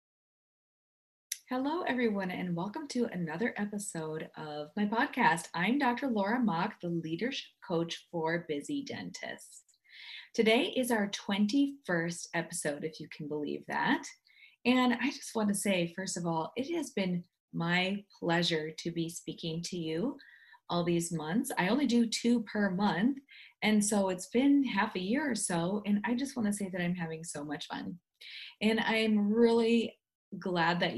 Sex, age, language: female, 20-39, English